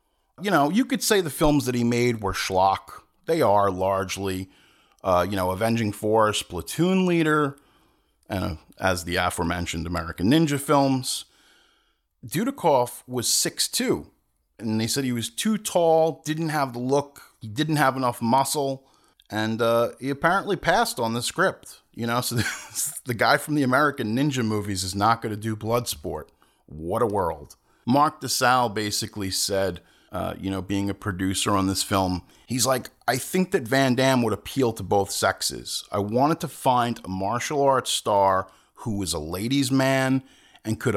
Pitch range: 100-135 Hz